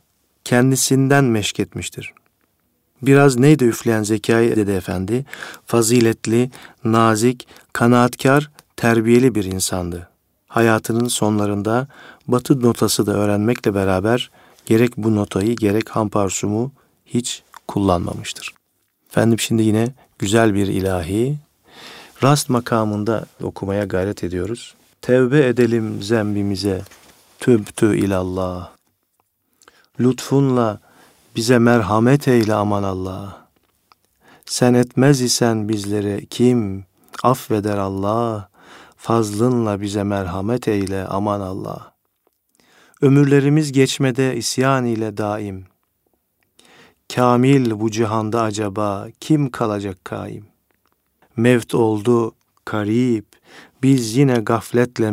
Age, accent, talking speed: 40-59, native, 90 wpm